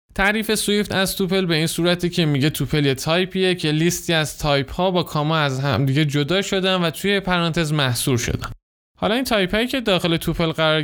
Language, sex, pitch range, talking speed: Persian, male, 135-185 Hz, 200 wpm